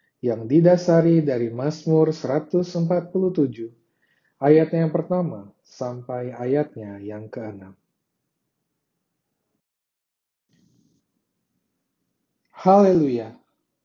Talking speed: 55 wpm